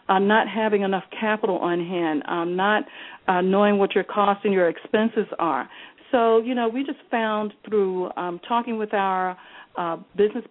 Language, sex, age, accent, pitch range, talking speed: English, female, 40-59, American, 185-230 Hz, 175 wpm